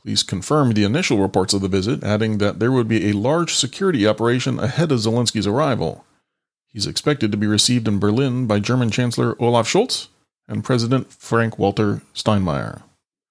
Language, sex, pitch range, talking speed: English, male, 105-135 Hz, 165 wpm